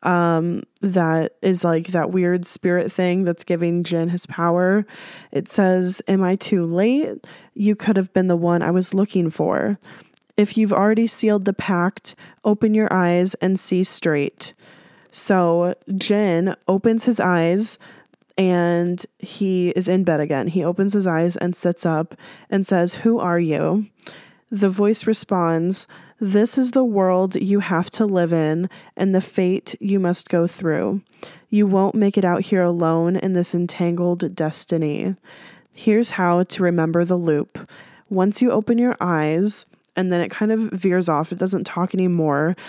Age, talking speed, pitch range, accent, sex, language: 20-39, 165 wpm, 170-195 Hz, American, female, English